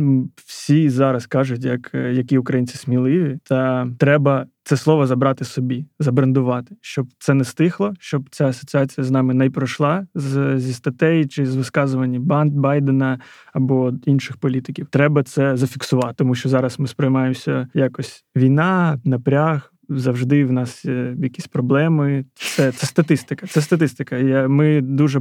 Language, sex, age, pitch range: Ukrainian, male, 20-39, 130-145 Hz